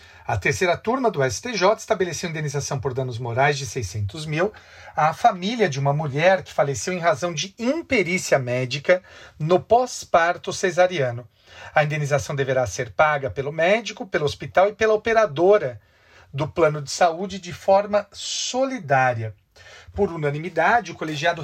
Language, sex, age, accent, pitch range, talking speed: Portuguese, male, 50-69, Brazilian, 140-195 Hz, 145 wpm